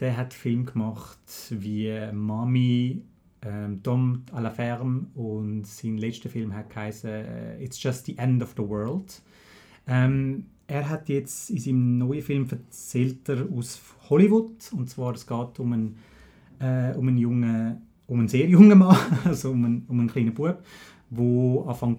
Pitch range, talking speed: 115-140 Hz, 160 wpm